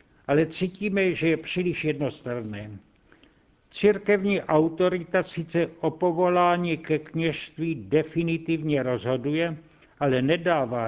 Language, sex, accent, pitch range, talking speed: Czech, male, native, 150-175 Hz, 95 wpm